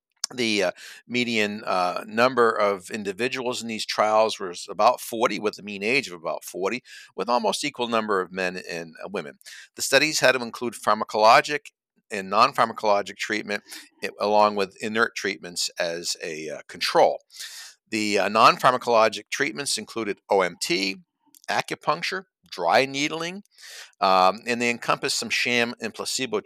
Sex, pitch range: male, 105-150 Hz